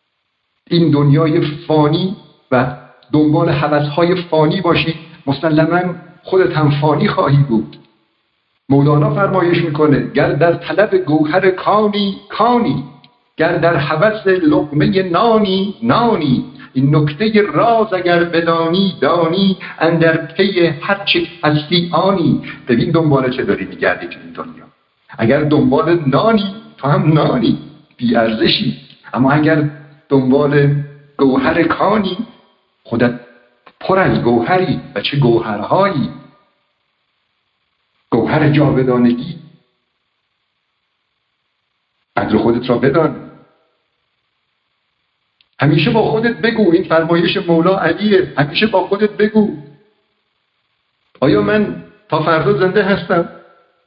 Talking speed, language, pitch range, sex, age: 100 wpm, Persian, 145-190 Hz, male, 60-79